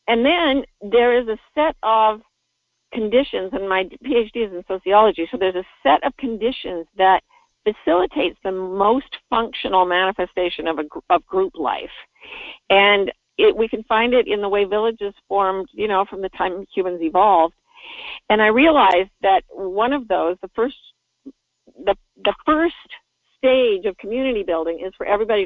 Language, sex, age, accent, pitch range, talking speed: English, female, 50-69, American, 190-270 Hz, 160 wpm